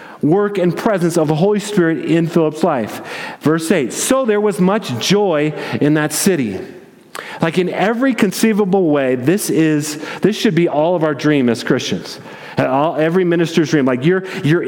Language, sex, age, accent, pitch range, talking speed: English, male, 40-59, American, 160-210 Hz, 175 wpm